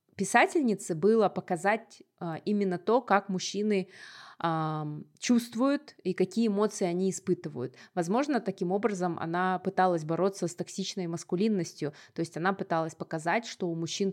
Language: Russian